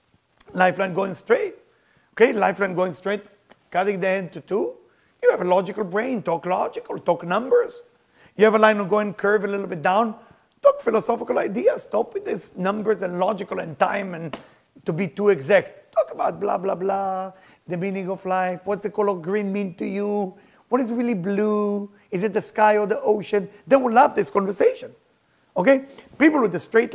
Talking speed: 190 wpm